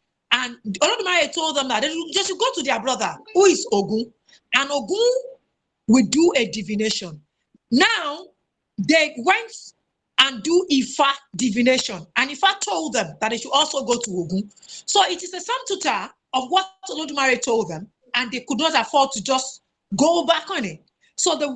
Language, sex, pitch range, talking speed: Russian, female, 245-365 Hz, 175 wpm